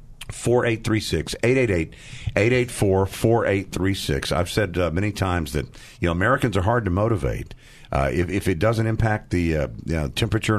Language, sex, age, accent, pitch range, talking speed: English, male, 50-69, American, 95-120 Hz, 165 wpm